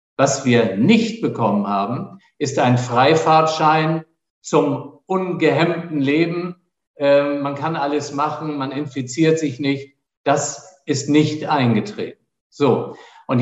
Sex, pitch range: male, 135-160 Hz